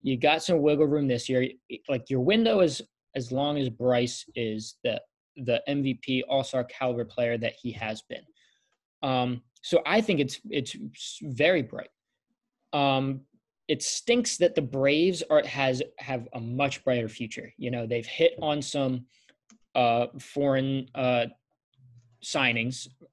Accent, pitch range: American, 120-150 Hz